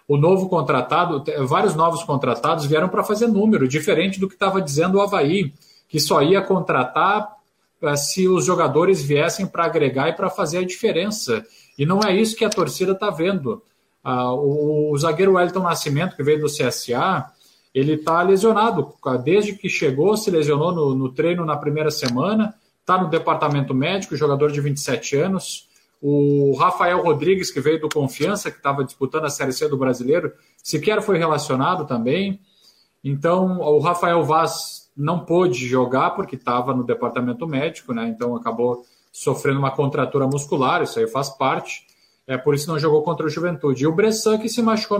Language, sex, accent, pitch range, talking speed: Portuguese, male, Brazilian, 145-195 Hz, 170 wpm